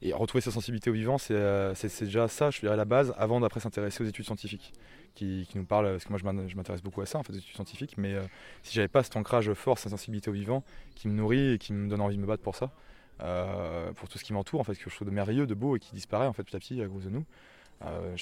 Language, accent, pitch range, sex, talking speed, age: French, French, 95-115 Hz, male, 305 wpm, 20-39